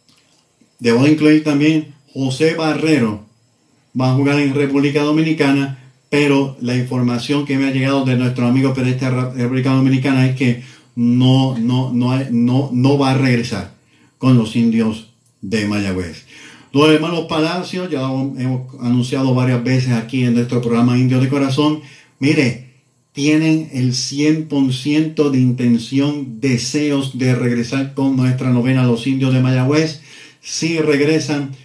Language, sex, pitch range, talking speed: English, male, 125-145 Hz, 140 wpm